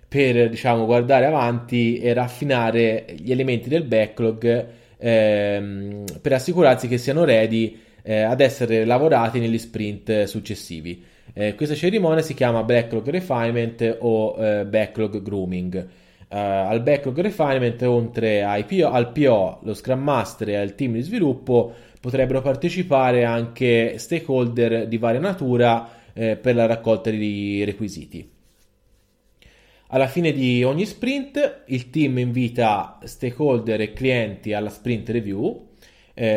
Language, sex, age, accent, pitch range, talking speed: Italian, male, 20-39, native, 110-135 Hz, 130 wpm